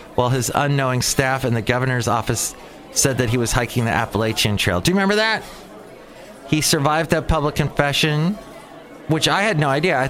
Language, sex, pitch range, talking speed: English, male, 105-150 Hz, 185 wpm